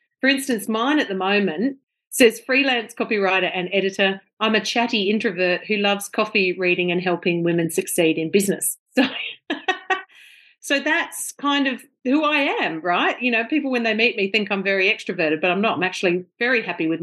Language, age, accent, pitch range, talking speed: English, 40-59, Australian, 190-265 Hz, 185 wpm